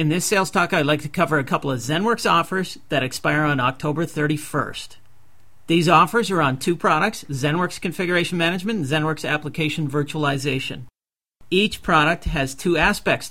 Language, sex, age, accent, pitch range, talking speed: English, male, 40-59, American, 140-175 Hz, 160 wpm